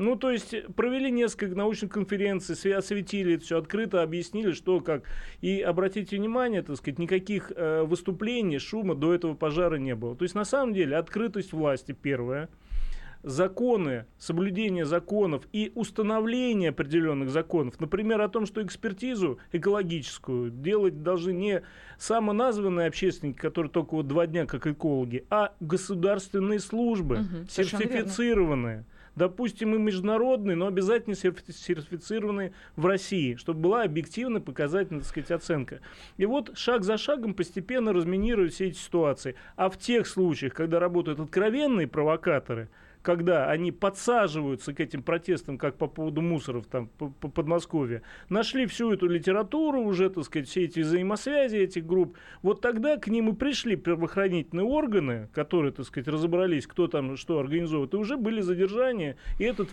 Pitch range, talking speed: 160-210 Hz, 145 wpm